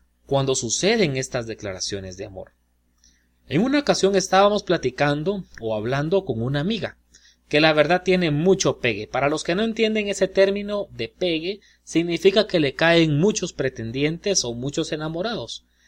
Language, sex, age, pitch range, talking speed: Spanish, male, 30-49, 115-190 Hz, 150 wpm